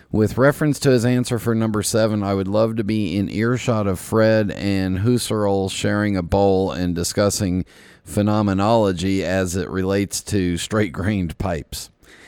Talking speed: 150 wpm